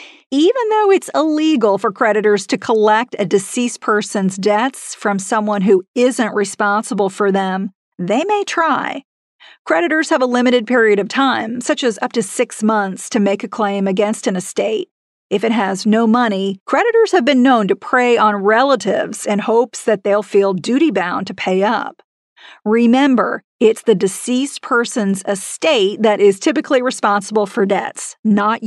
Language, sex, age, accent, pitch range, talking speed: English, female, 50-69, American, 205-250 Hz, 160 wpm